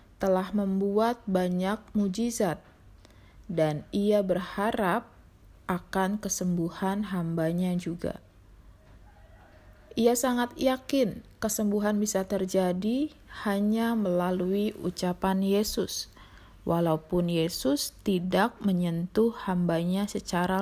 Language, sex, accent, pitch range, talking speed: Indonesian, female, native, 165-220 Hz, 80 wpm